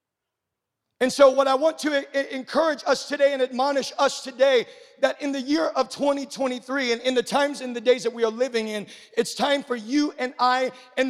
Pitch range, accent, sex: 235-280 Hz, American, male